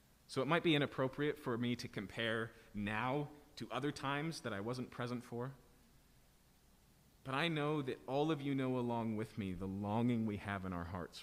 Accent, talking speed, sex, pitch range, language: American, 195 wpm, male, 95-145 Hz, English